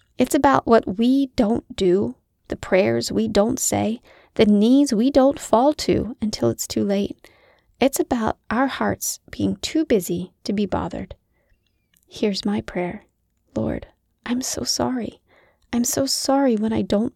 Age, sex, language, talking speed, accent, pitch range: 30-49, female, English, 155 wpm, American, 205-265 Hz